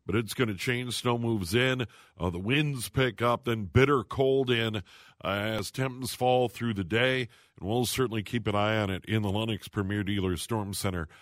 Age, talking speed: 50-69, 210 wpm